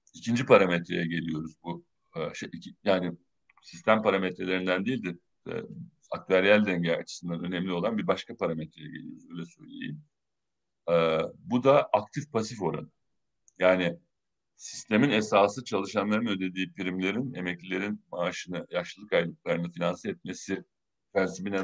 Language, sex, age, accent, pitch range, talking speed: Turkish, male, 60-79, native, 85-105 Hz, 115 wpm